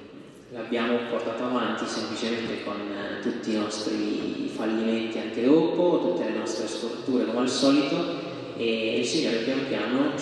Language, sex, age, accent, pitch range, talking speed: Italian, male, 20-39, native, 110-130 Hz, 140 wpm